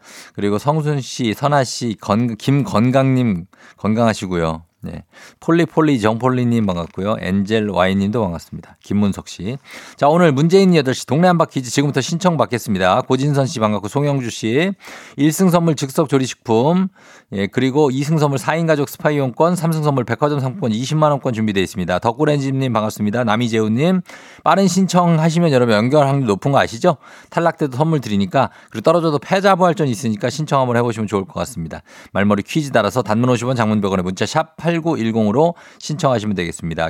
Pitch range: 110-155 Hz